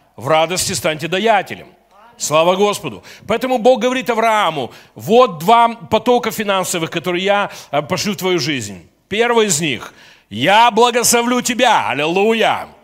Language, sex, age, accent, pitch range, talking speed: Russian, male, 40-59, native, 180-235 Hz, 125 wpm